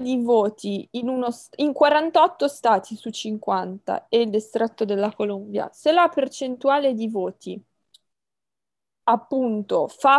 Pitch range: 210-290 Hz